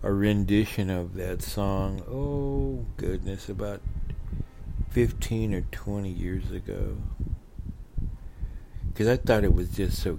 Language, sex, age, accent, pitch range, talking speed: English, male, 60-79, American, 90-125 Hz, 120 wpm